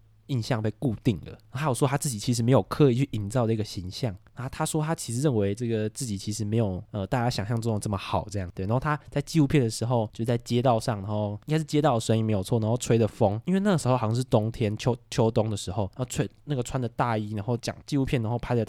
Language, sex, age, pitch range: Chinese, male, 20-39, 110-145 Hz